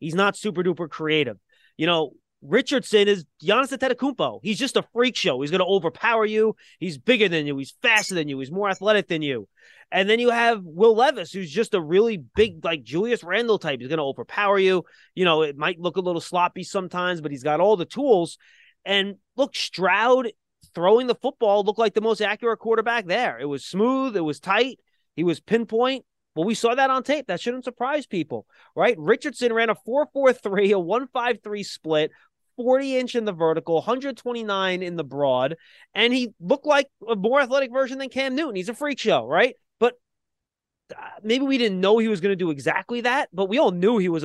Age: 30-49